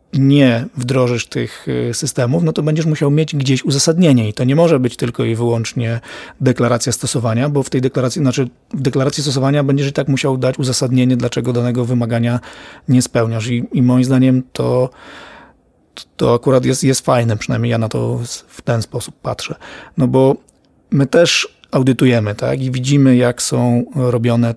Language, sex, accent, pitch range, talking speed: Polish, male, native, 120-140 Hz, 170 wpm